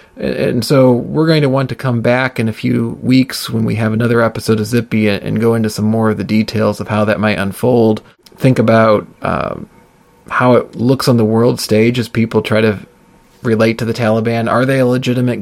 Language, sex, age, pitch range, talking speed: English, male, 30-49, 110-125 Hz, 215 wpm